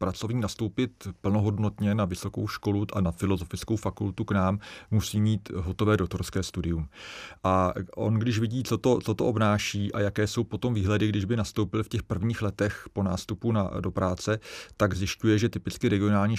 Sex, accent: male, native